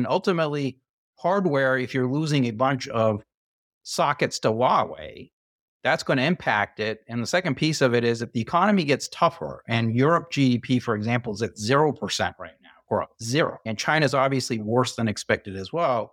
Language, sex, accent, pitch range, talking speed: English, male, American, 110-135 Hz, 175 wpm